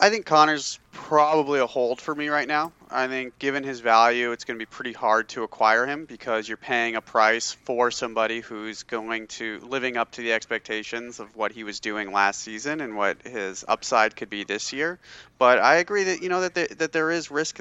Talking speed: 225 wpm